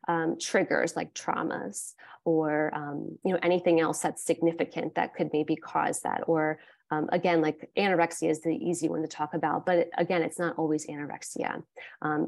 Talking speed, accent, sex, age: 175 wpm, American, female, 20-39